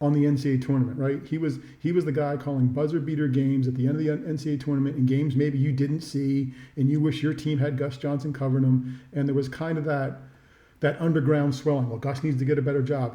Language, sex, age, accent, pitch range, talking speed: English, male, 40-59, American, 130-150 Hz, 250 wpm